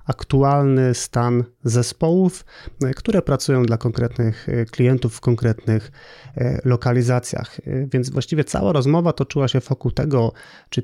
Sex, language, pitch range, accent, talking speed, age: male, Polish, 115-135 Hz, native, 110 wpm, 30-49